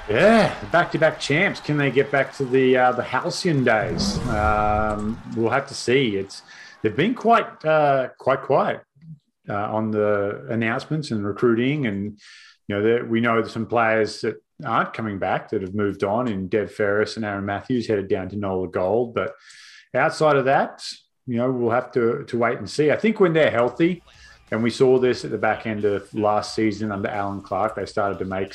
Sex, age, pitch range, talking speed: male, 30-49, 105-125 Hz, 200 wpm